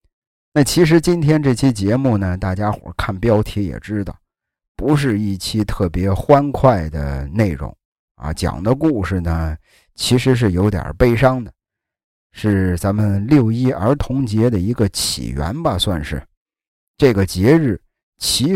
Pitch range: 90-130 Hz